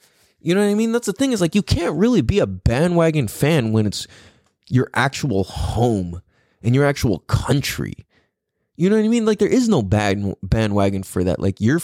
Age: 20-39